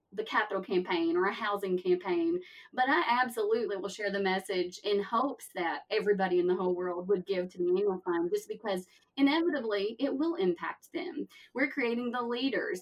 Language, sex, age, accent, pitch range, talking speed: English, female, 20-39, American, 195-245 Hz, 185 wpm